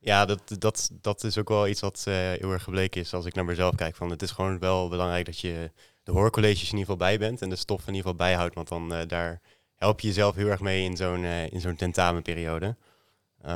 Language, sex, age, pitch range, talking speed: Dutch, male, 20-39, 90-100 Hz, 235 wpm